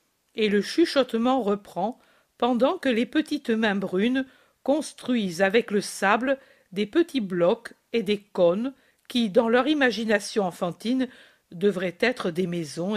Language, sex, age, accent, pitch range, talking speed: French, female, 50-69, French, 195-265 Hz, 135 wpm